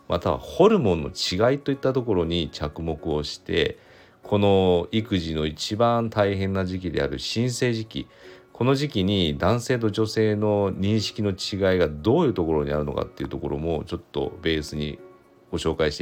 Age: 40-59